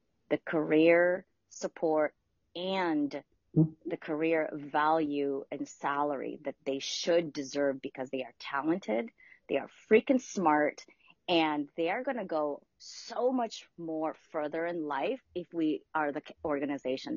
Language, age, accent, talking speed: English, 30-49, American, 135 wpm